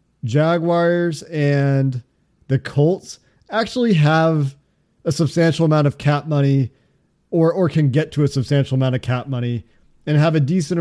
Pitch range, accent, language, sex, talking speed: 140-170 Hz, American, English, male, 150 wpm